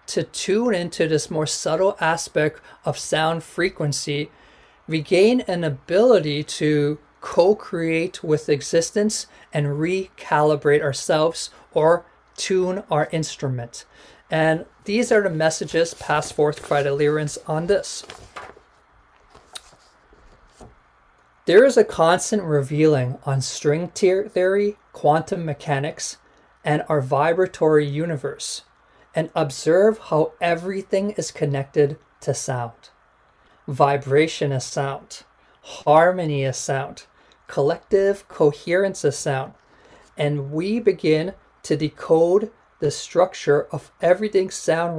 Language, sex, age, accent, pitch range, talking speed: English, male, 40-59, American, 145-185 Hz, 105 wpm